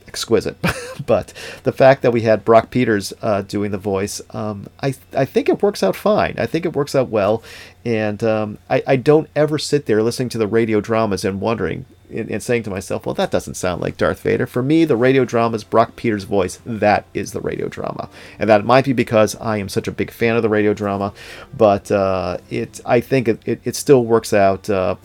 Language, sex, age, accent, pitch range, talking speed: English, male, 40-59, American, 105-130 Hz, 225 wpm